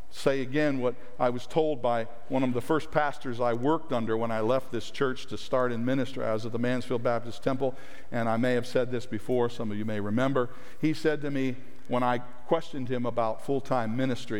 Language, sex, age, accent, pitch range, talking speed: English, male, 50-69, American, 110-140 Hz, 230 wpm